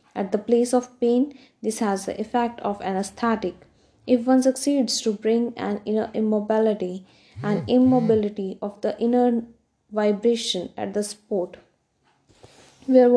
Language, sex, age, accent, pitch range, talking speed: English, female, 20-39, Indian, 205-245 Hz, 130 wpm